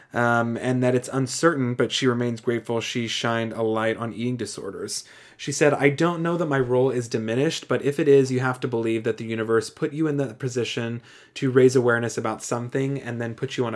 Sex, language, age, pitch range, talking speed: male, English, 20-39, 115-135 Hz, 225 wpm